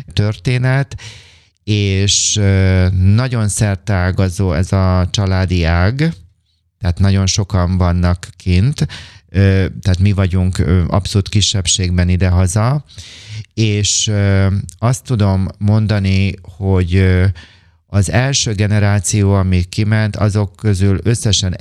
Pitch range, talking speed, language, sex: 90-105 Hz, 90 wpm, Hungarian, male